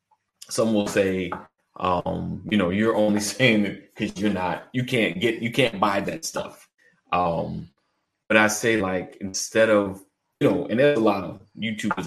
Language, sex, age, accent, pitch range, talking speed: English, male, 30-49, American, 95-115 Hz, 180 wpm